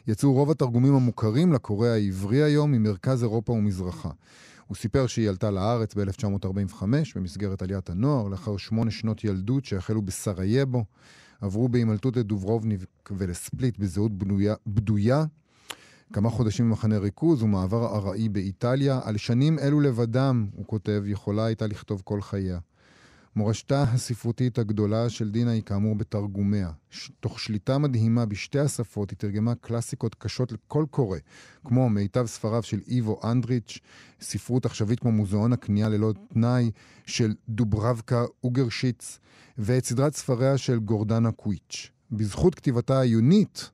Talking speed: 130 wpm